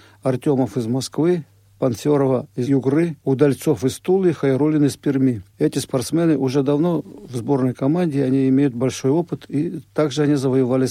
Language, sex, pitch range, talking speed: Russian, male, 125-150 Hz, 150 wpm